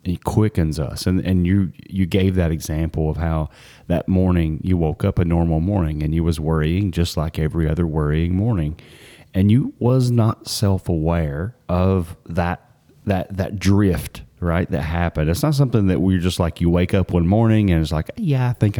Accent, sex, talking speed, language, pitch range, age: American, male, 200 wpm, English, 80-100 Hz, 30-49